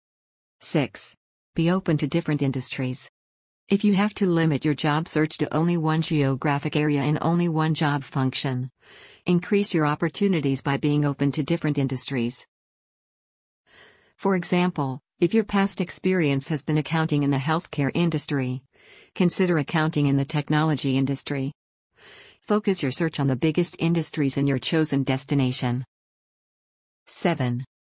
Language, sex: English, female